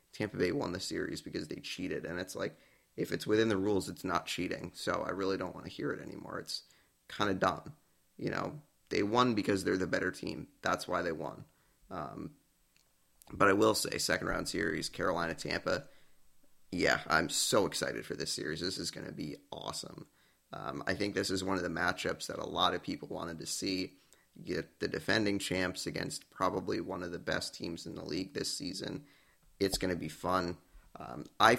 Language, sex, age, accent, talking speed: English, male, 30-49, American, 205 wpm